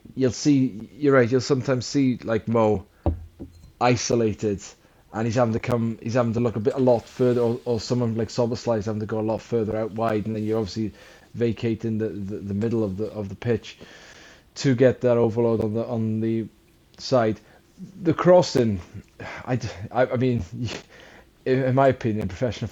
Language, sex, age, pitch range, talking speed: English, male, 20-39, 105-130 Hz, 190 wpm